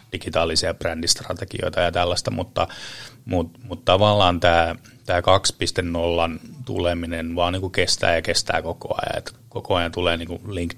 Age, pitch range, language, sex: 30-49, 85-110 Hz, Finnish, male